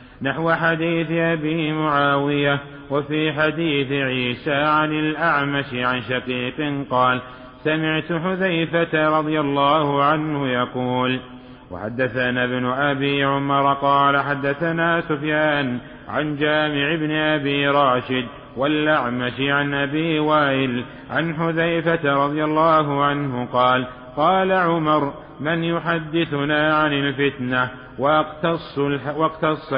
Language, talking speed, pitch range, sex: Arabic, 95 wpm, 130-155 Hz, male